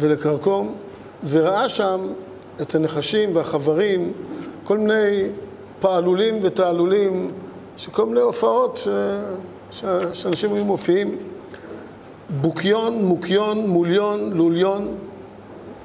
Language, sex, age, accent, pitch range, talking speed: Hebrew, male, 50-69, native, 165-210 Hz, 80 wpm